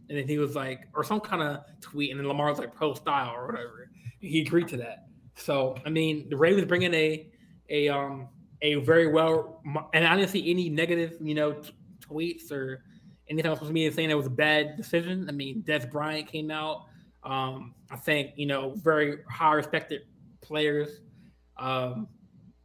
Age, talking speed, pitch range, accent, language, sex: 20-39, 190 wpm, 140-160 Hz, American, English, male